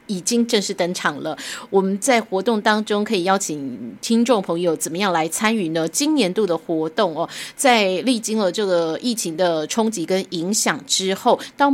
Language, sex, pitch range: Chinese, female, 170-235 Hz